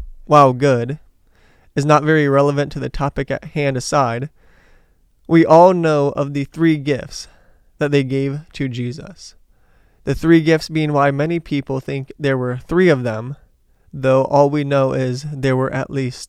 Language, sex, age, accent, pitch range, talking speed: English, male, 20-39, American, 125-150 Hz, 170 wpm